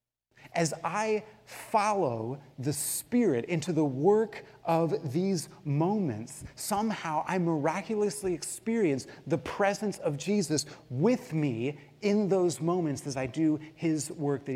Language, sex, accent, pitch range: English, male, American, 125-170 Hz